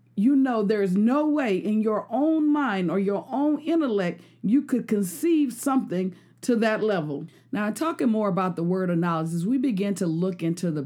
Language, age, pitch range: English, 50-69, 175-215 Hz